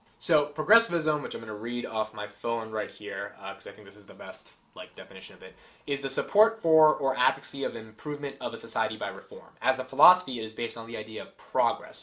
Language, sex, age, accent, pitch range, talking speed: English, male, 20-39, American, 115-150 Hz, 240 wpm